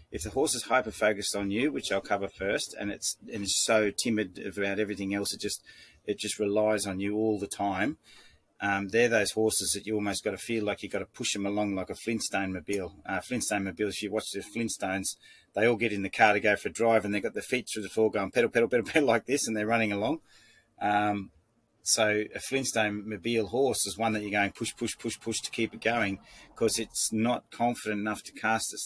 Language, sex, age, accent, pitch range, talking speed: English, male, 30-49, Australian, 100-110 Hz, 240 wpm